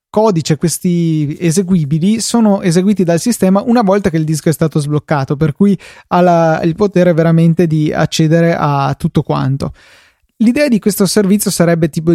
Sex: male